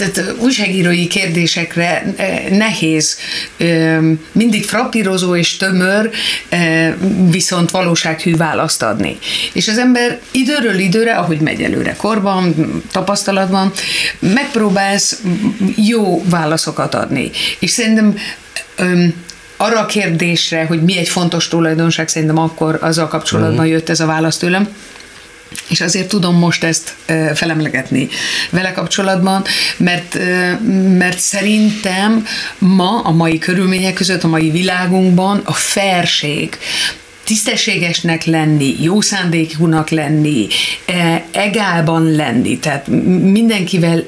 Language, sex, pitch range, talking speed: Hungarian, female, 160-200 Hz, 105 wpm